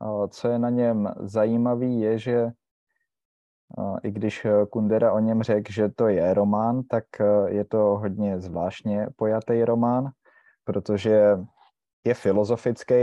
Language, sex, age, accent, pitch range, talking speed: Czech, male, 20-39, native, 95-110 Hz, 125 wpm